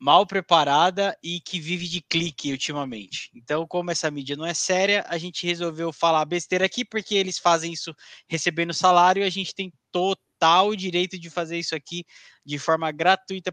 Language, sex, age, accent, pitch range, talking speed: Portuguese, male, 20-39, Brazilian, 150-185 Hz, 175 wpm